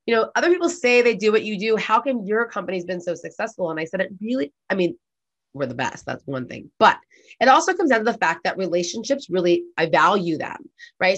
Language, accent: English, American